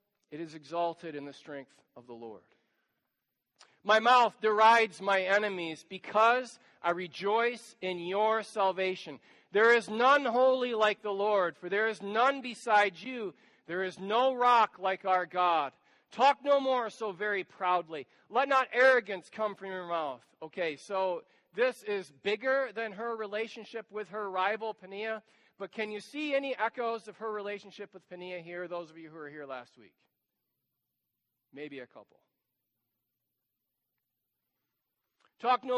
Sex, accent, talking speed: male, American, 150 wpm